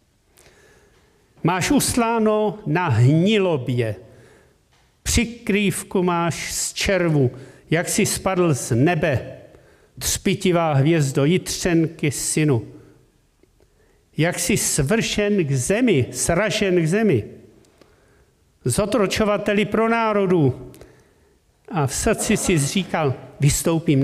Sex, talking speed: male, 85 wpm